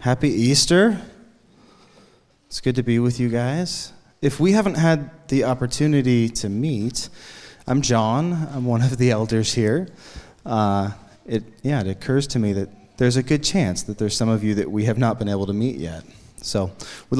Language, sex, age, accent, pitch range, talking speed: English, male, 30-49, American, 115-150 Hz, 185 wpm